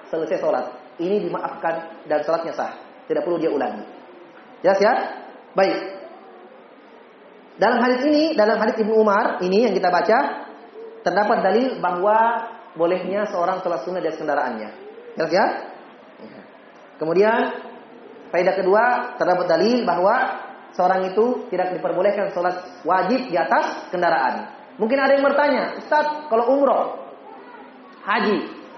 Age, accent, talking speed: 30-49, native, 125 wpm